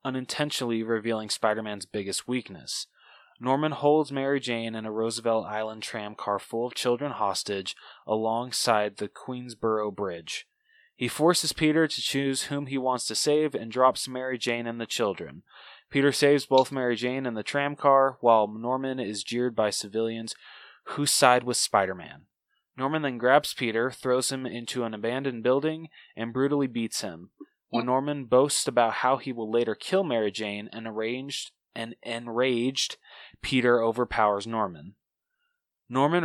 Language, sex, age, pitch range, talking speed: English, male, 20-39, 110-135 Hz, 150 wpm